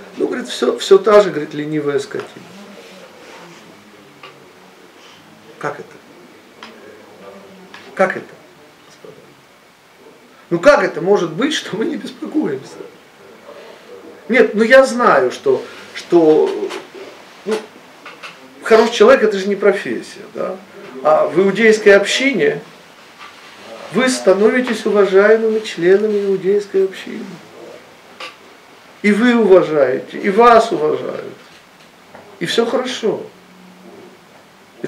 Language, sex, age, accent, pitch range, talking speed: Russian, male, 40-59, native, 200-320 Hz, 100 wpm